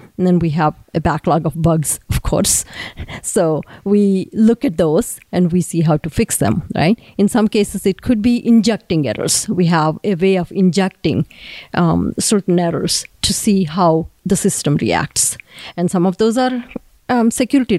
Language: English